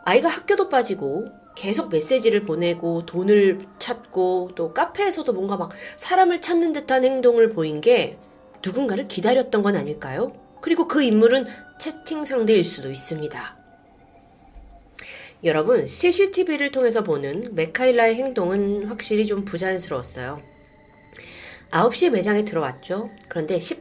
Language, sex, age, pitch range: Korean, female, 30-49, 175-260 Hz